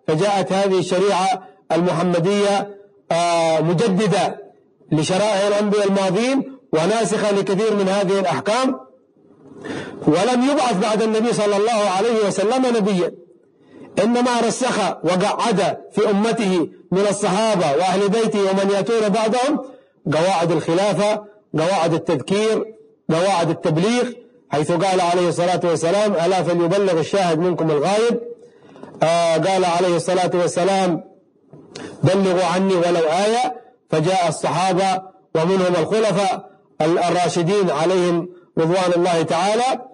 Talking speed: 100 wpm